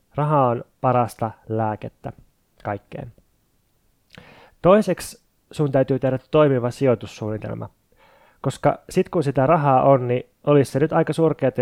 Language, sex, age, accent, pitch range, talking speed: Finnish, male, 20-39, native, 115-145 Hz, 120 wpm